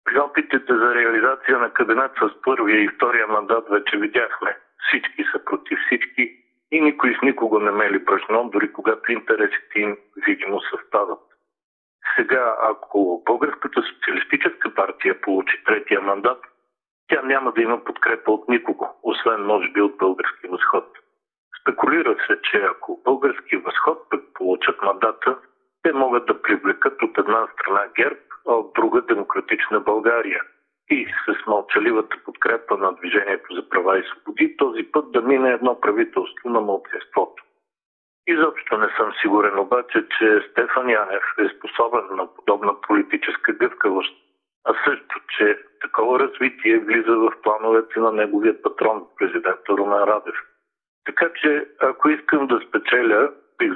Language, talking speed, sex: Bulgarian, 140 wpm, male